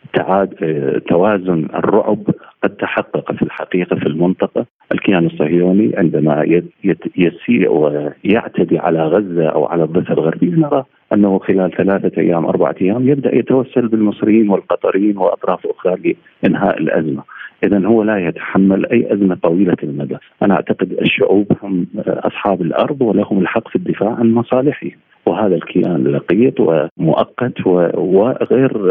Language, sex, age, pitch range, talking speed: Arabic, male, 40-59, 95-125 Hz, 125 wpm